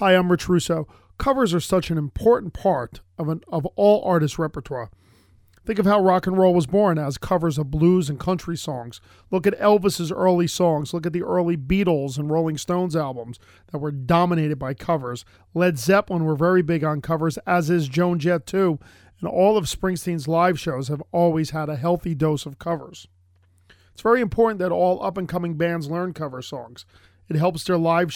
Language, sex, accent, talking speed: English, male, American, 190 wpm